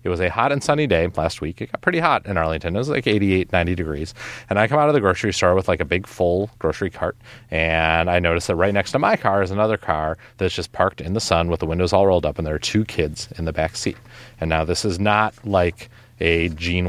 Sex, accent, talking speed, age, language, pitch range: male, American, 275 wpm, 30-49, English, 85-115 Hz